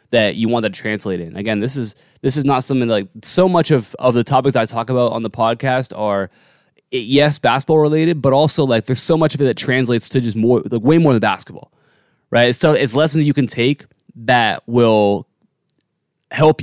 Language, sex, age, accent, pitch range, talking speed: English, male, 20-39, American, 110-140 Hz, 225 wpm